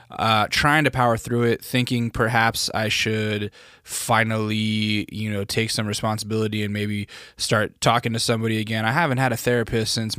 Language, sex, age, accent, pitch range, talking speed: English, male, 20-39, American, 105-120 Hz, 170 wpm